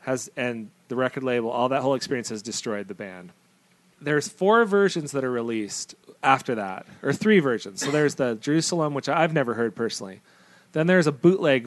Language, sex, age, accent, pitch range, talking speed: English, male, 30-49, American, 115-155 Hz, 190 wpm